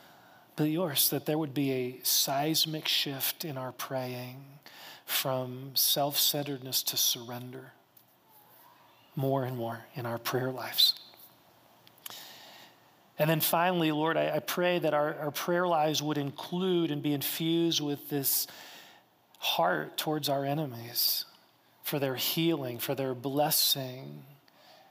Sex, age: male, 40-59